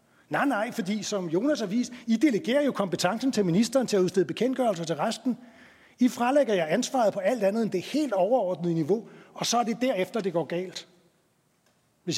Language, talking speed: Danish, 195 wpm